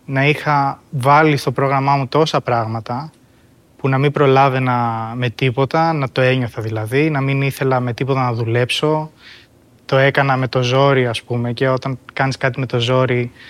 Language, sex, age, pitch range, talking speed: Greek, male, 20-39, 125-150 Hz, 175 wpm